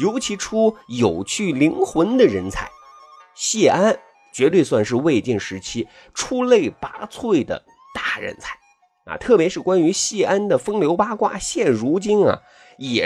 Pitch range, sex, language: 165-265 Hz, male, Chinese